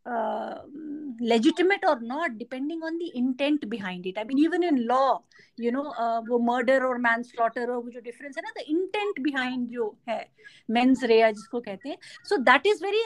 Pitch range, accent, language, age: 230-320 Hz, native, Hindi, 50-69